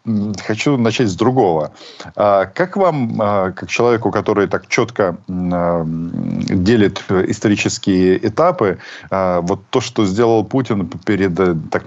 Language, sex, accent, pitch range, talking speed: Ukrainian, male, native, 90-115 Hz, 105 wpm